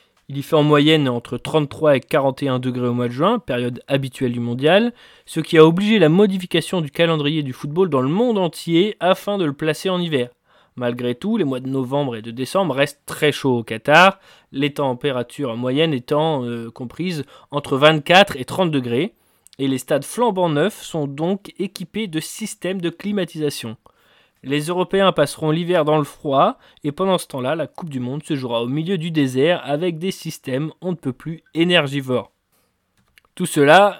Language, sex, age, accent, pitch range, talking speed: French, male, 20-39, French, 135-175 Hz, 185 wpm